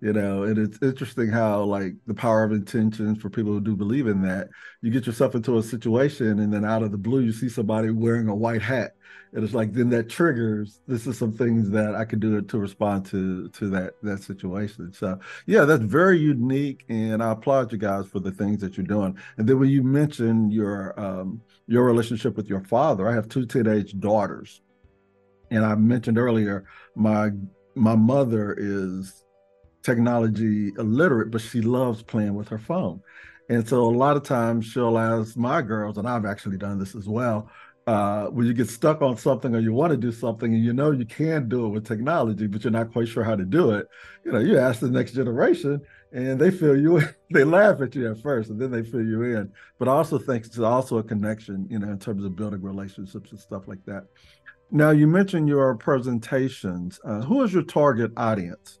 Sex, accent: male, American